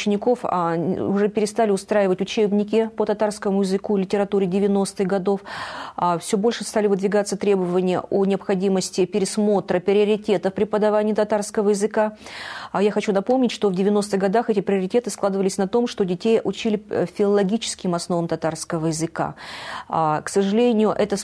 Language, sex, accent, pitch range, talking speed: Russian, female, native, 185-215 Hz, 140 wpm